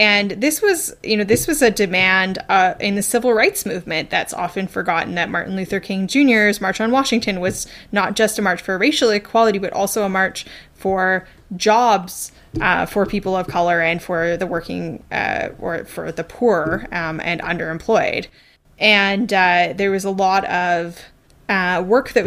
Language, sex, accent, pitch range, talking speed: English, female, American, 185-220 Hz, 180 wpm